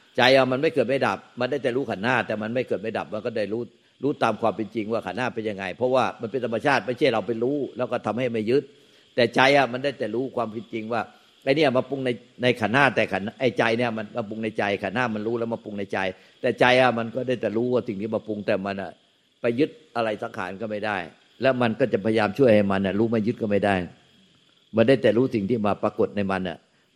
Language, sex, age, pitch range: Thai, male, 60-79, 105-125 Hz